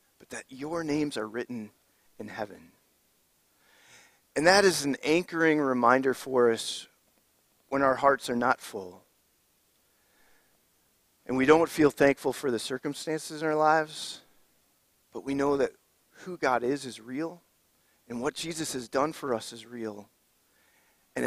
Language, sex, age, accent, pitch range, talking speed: English, male, 40-59, American, 115-155 Hz, 145 wpm